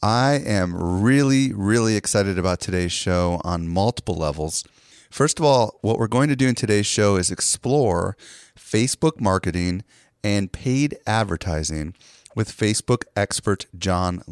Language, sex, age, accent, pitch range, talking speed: English, male, 40-59, American, 90-120 Hz, 140 wpm